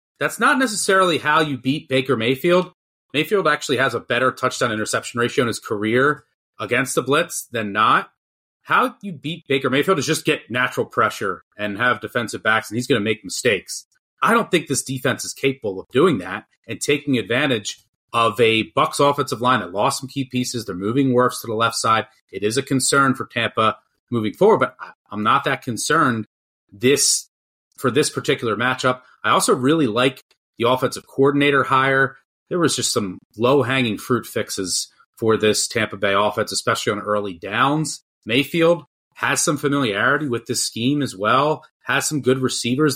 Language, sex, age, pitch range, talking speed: English, male, 30-49, 120-155 Hz, 180 wpm